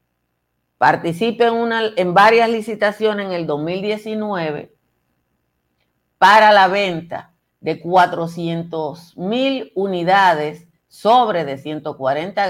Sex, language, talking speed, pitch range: female, Spanish, 85 wpm, 140-200 Hz